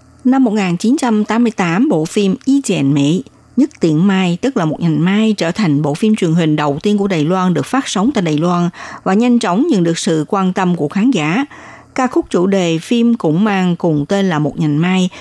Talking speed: 215 wpm